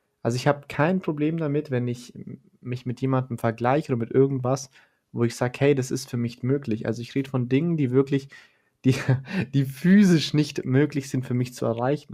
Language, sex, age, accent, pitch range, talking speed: German, male, 30-49, German, 115-140 Hz, 205 wpm